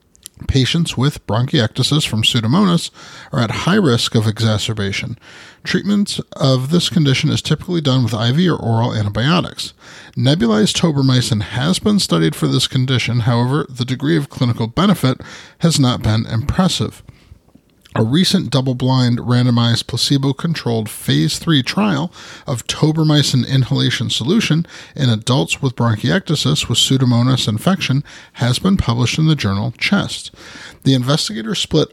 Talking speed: 130 wpm